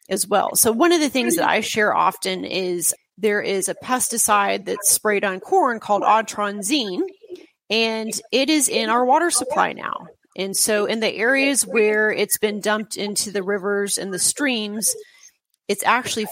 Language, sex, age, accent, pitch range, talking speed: English, female, 30-49, American, 190-230 Hz, 175 wpm